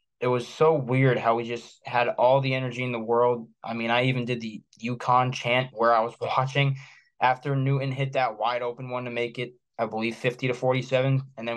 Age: 20-39